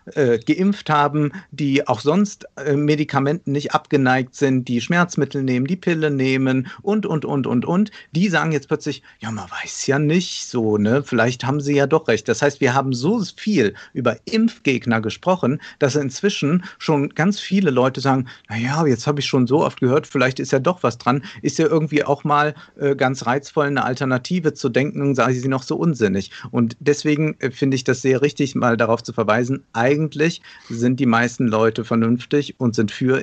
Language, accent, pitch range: German, German, 115-145 Hz